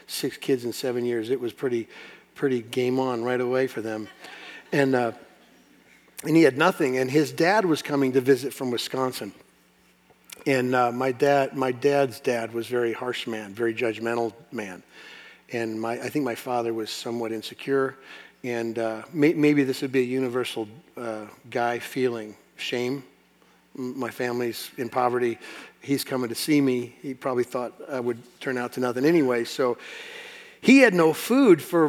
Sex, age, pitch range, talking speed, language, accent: male, 50-69, 120-145 Hz, 170 wpm, English, American